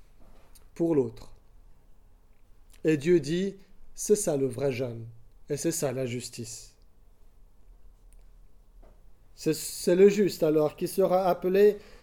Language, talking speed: French, 105 wpm